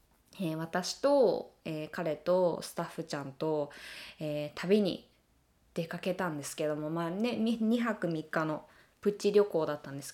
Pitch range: 155-215 Hz